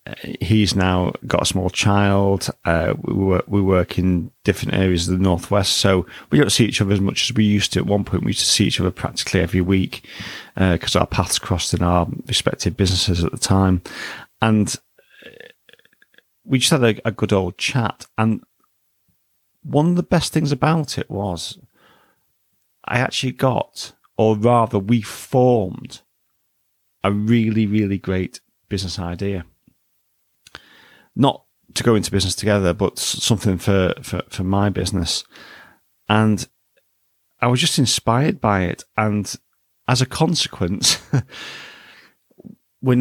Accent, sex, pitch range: British, male, 95-115 Hz